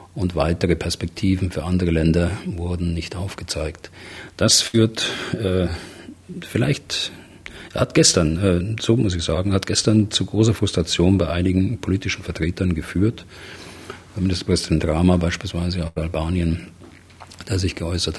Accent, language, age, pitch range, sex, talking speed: German, German, 40-59, 85-100 Hz, male, 125 wpm